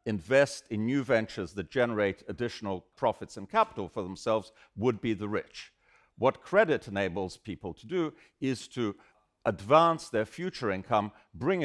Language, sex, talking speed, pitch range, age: English, male, 150 wpm, 100-140 Hz, 50-69